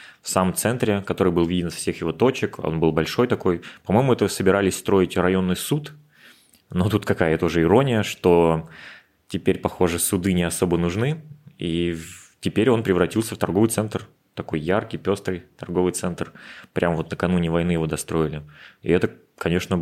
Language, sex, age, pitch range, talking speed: Russian, male, 20-39, 85-95 Hz, 160 wpm